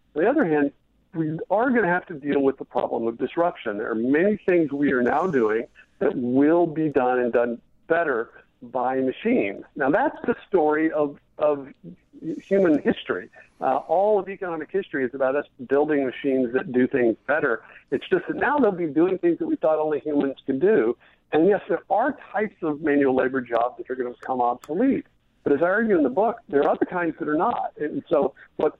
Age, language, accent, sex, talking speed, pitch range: 50-69, English, American, male, 215 wpm, 135-195 Hz